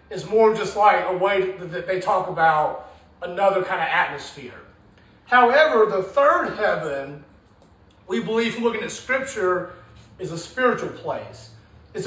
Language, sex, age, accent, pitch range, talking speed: English, male, 40-59, American, 185-250 Hz, 145 wpm